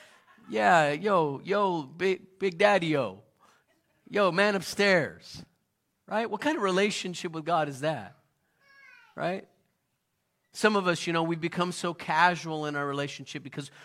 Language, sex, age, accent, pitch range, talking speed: English, male, 40-59, American, 145-210 Hz, 145 wpm